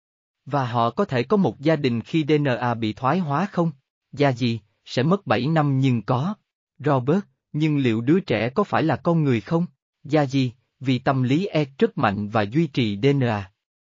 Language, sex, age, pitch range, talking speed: Vietnamese, male, 20-39, 115-155 Hz, 195 wpm